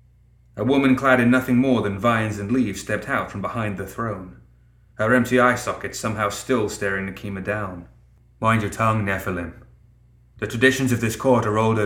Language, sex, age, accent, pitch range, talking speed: English, male, 30-49, British, 100-120 Hz, 180 wpm